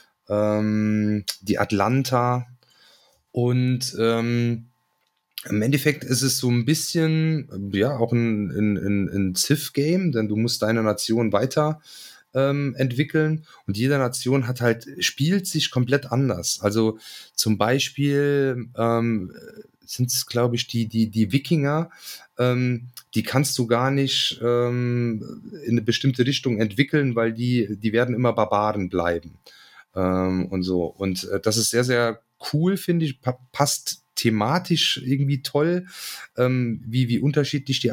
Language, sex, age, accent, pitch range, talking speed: German, male, 30-49, German, 105-135 Hz, 140 wpm